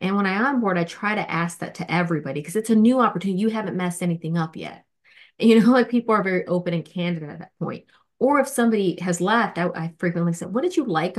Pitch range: 165-215 Hz